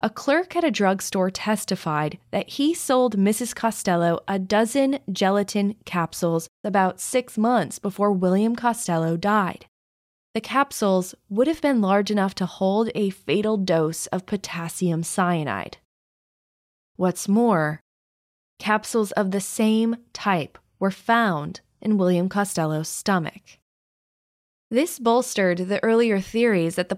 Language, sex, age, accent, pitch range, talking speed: English, female, 20-39, American, 180-225 Hz, 125 wpm